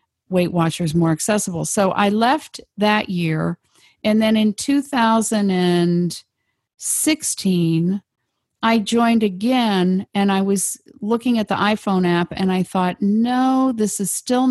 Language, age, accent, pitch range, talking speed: English, 50-69, American, 175-215 Hz, 130 wpm